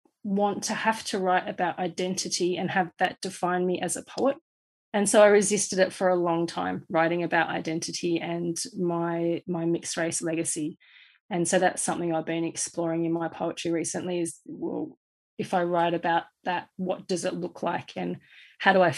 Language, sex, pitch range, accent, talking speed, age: English, female, 170-185 Hz, Australian, 190 wpm, 30-49